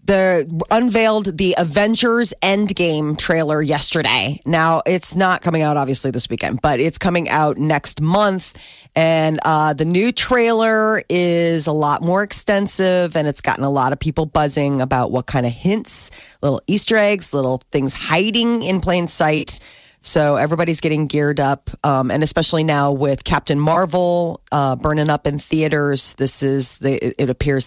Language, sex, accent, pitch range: Japanese, female, American, 140-195 Hz